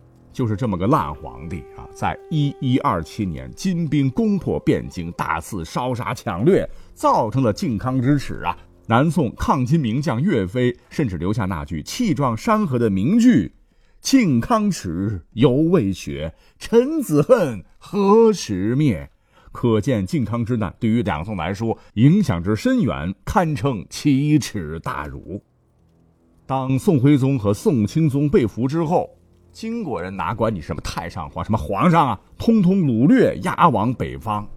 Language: Chinese